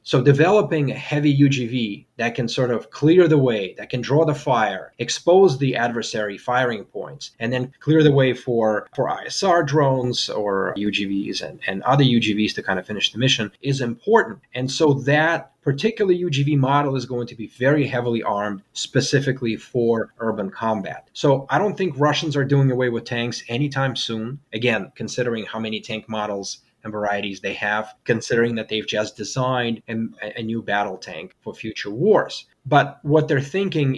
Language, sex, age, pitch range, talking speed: English, male, 30-49, 110-140 Hz, 175 wpm